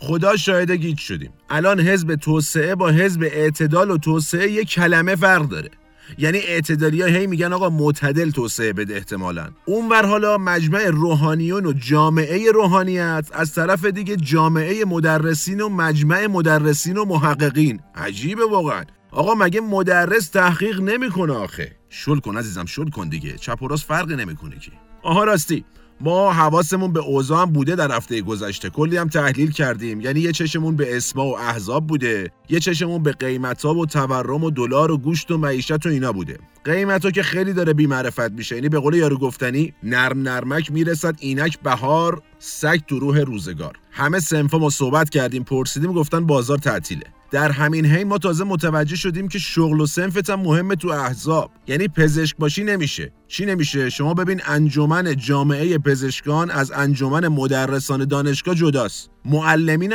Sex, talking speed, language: male, 160 wpm, Persian